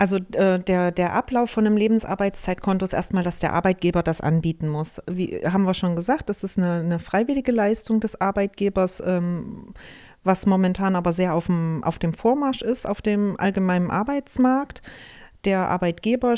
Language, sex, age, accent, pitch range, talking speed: German, female, 30-49, German, 180-225 Hz, 165 wpm